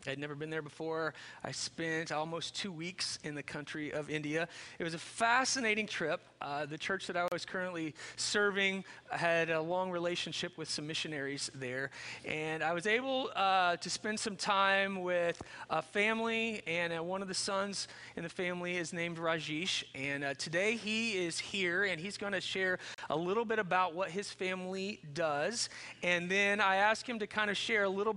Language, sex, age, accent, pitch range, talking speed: English, male, 30-49, American, 165-205 Hz, 195 wpm